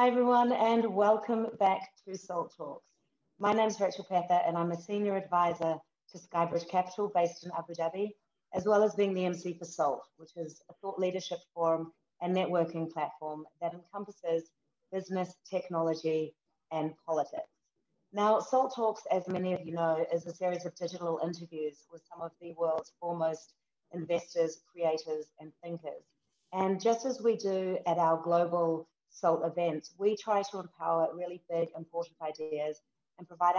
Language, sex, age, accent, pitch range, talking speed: English, female, 40-59, Australian, 165-190 Hz, 165 wpm